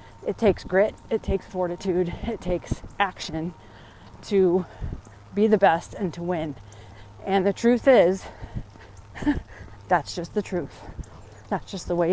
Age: 30-49